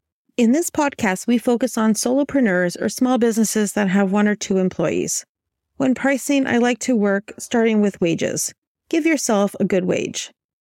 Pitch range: 185-245 Hz